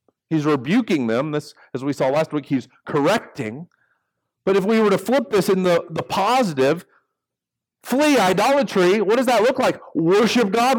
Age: 50-69